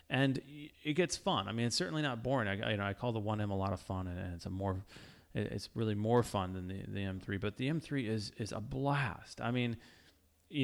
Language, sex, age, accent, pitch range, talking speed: English, male, 30-49, American, 95-115 Hz, 245 wpm